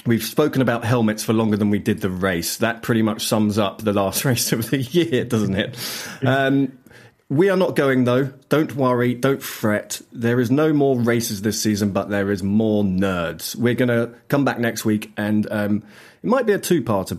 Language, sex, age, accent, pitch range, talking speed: English, male, 30-49, British, 100-135 Hz, 210 wpm